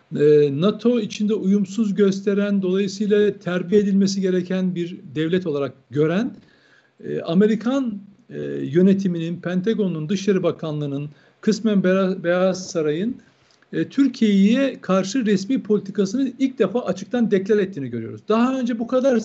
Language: Turkish